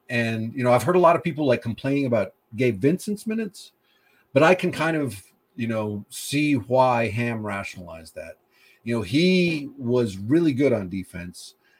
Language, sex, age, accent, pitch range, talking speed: English, male, 40-59, American, 110-140 Hz, 180 wpm